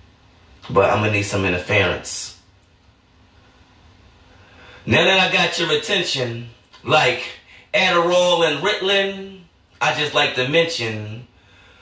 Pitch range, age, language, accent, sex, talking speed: 105-170 Hz, 30-49, English, American, male, 110 wpm